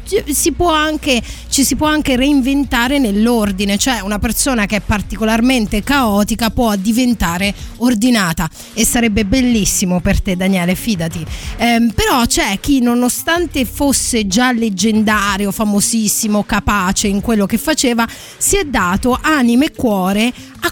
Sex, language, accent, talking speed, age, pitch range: female, Italian, native, 125 wpm, 30-49, 210-280 Hz